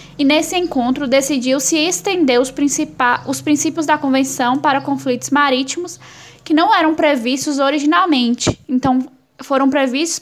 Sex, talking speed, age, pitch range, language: female, 130 wpm, 10-29, 260-305 Hz, Portuguese